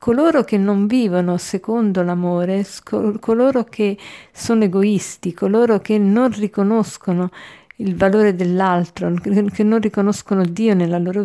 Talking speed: 125 wpm